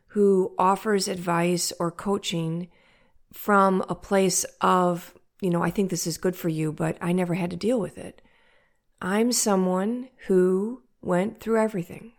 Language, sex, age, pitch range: English, female, 40-59, 175-210 Hz